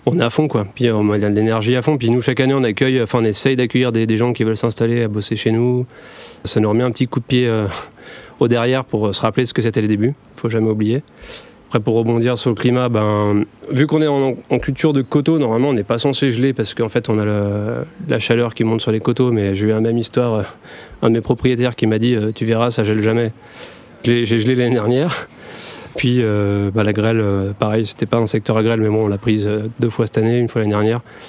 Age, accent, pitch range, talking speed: 30-49, French, 110-125 Hz, 260 wpm